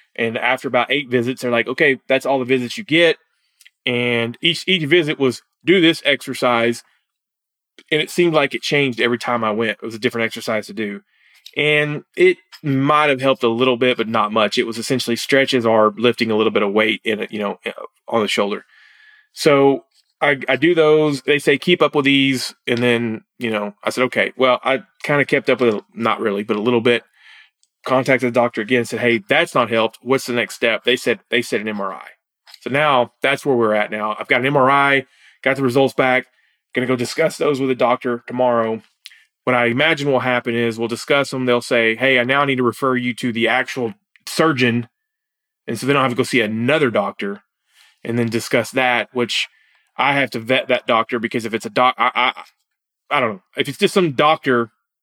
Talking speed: 220 wpm